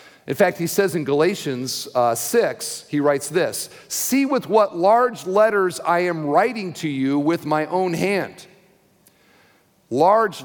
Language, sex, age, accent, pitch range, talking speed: English, male, 50-69, American, 130-175 Hz, 150 wpm